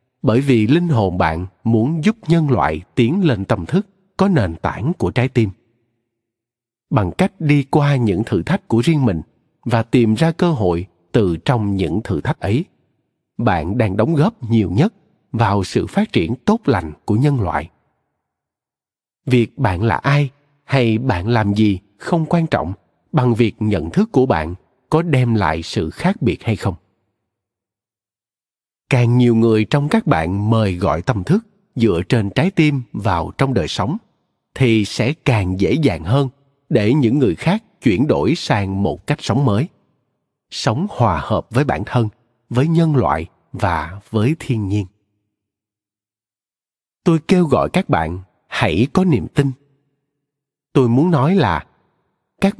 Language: Vietnamese